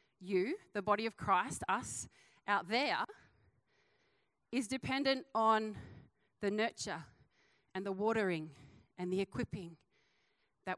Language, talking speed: English, 110 wpm